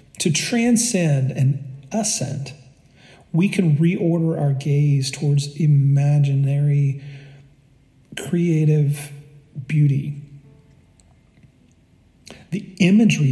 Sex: male